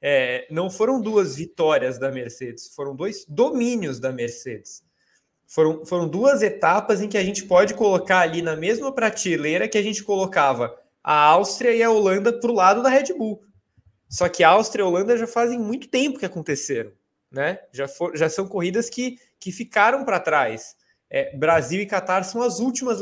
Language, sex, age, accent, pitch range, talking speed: Portuguese, male, 20-39, Brazilian, 165-225 Hz, 190 wpm